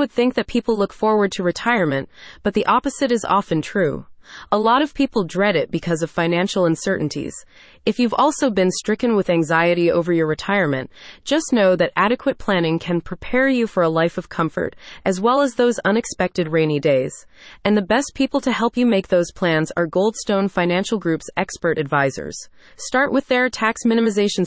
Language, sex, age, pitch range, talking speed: English, female, 30-49, 170-235 Hz, 185 wpm